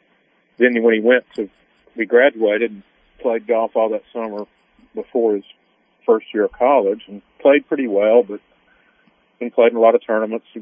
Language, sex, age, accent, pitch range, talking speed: English, male, 40-59, American, 100-115 Hz, 175 wpm